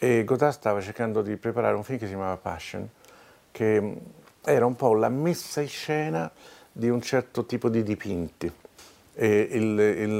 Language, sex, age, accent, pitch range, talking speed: Italian, male, 50-69, native, 100-125 Hz, 165 wpm